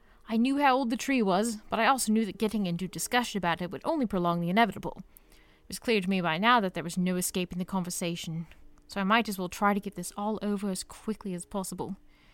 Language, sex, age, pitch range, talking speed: English, female, 20-39, 175-240 Hz, 255 wpm